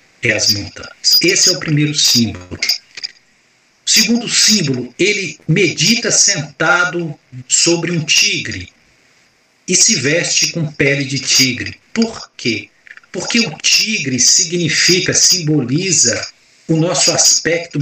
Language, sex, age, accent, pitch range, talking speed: Portuguese, male, 60-79, Brazilian, 130-180 Hz, 110 wpm